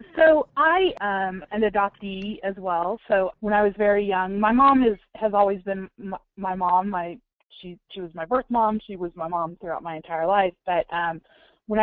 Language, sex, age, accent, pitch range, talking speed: English, female, 20-39, American, 170-210 Hz, 210 wpm